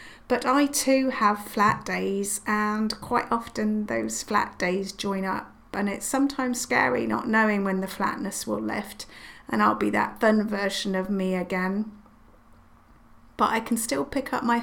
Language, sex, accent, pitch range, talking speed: English, female, British, 190-225 Hz, 170 wpm